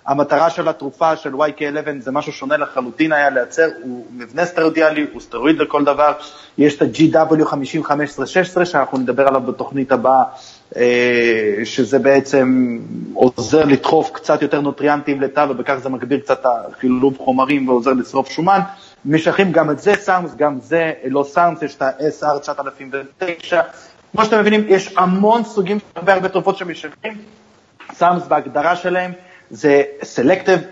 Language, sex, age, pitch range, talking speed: Hebrew, male, 30-49, 140-180 Hz, 140 wpm